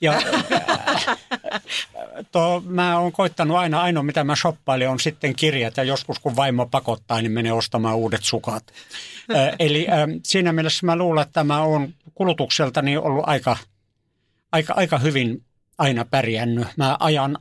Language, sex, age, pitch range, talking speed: Finnish, male, 60-79, 120-155 Hz, 150 wpm